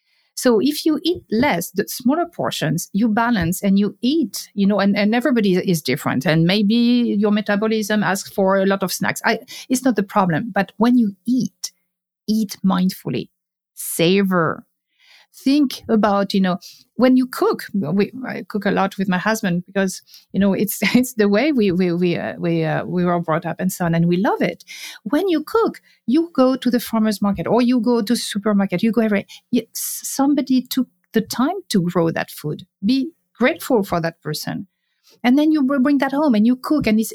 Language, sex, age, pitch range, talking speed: English, female, 50-69, 195-255 Hz, 195 wpm